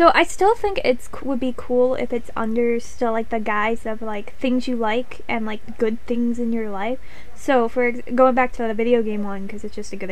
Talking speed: 250 wpm